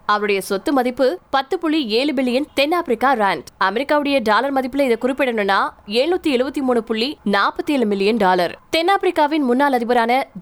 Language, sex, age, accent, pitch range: Tamil, female, 20-39, native, 225-280 Hz